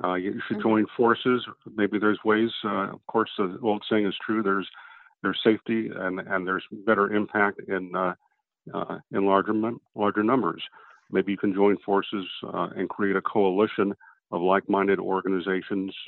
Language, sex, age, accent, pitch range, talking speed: English, male, 50-69, American, 95-110 Hz, 165 wpm